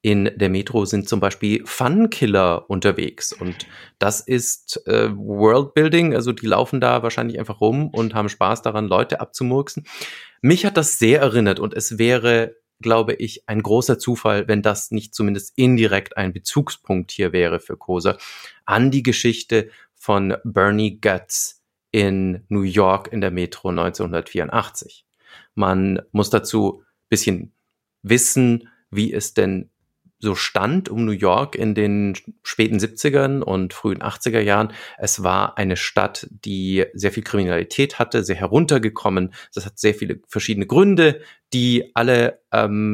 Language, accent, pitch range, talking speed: German, German, 100-120 Hz, 145 wpm